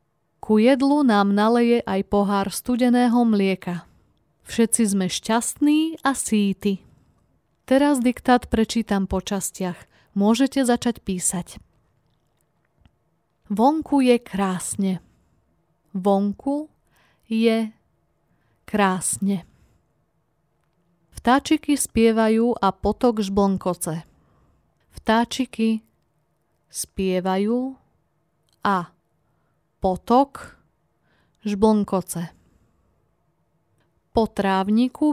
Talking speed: 65 wpm